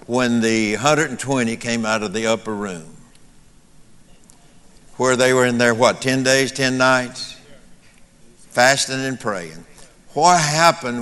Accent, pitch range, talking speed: American, 115-150 Hz, 130 wpm